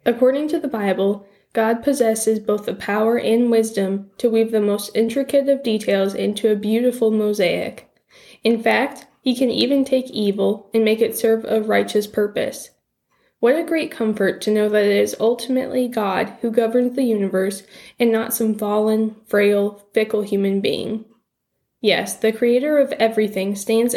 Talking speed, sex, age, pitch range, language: 165 wpm, female, 10-29, 205-235 Hz, English